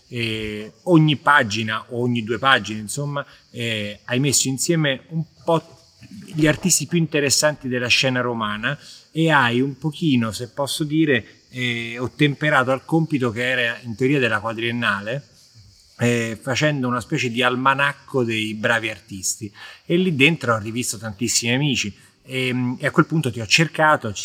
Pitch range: 110-145 Hz